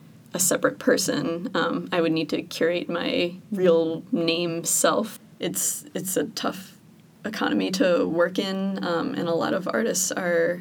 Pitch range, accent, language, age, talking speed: 165-190 Hz, American, English, 20-39, 160 wpm